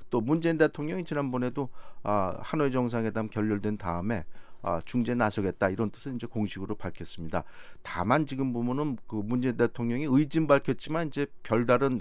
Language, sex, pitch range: Korean, male, 105-130 Hz